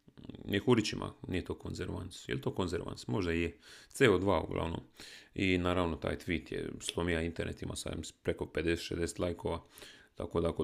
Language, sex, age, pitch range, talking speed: Croatian, male, 30-49, 85-95 Hz, 145 wpm